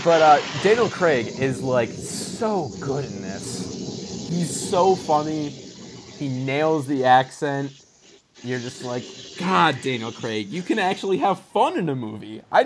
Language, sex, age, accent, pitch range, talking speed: English, male, 20-39, American, 135-190 Hz, 150 wpm